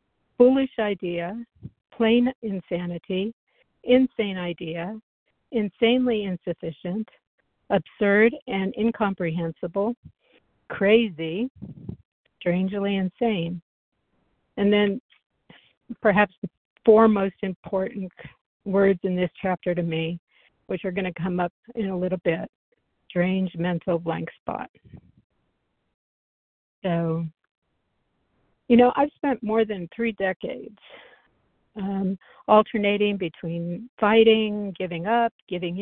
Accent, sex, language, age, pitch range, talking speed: American, female, English, 60-79, 185-225 Hz, 95 wpm